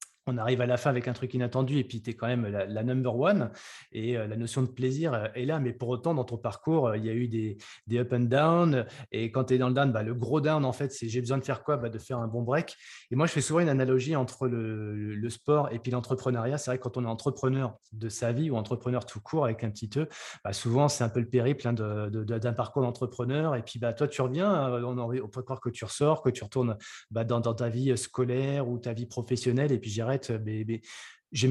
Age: 20-39